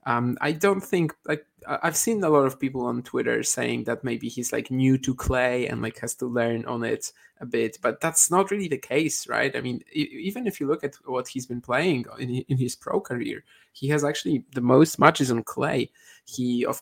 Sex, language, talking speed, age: male, English, 225 wpm, 20-39